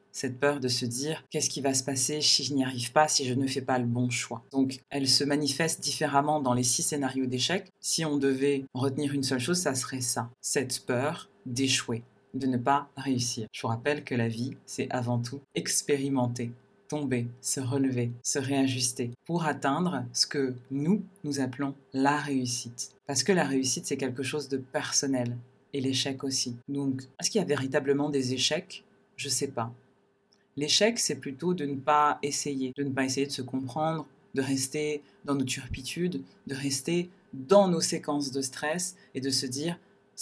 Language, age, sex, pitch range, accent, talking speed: French, 20-39, female, 130-150 Hz, French, 195 wpm